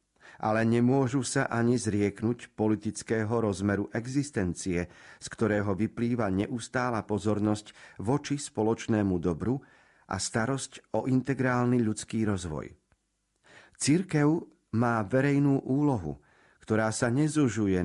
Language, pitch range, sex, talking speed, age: Slovak, 100-125 Hz, male, 100 wpm, 40-59